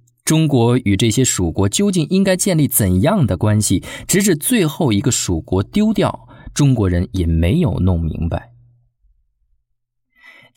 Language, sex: Chinese, male